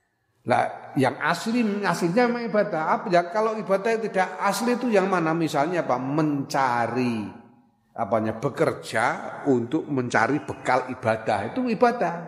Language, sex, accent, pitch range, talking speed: Indonesian, male, native, 125-195 Hz, 120 wpm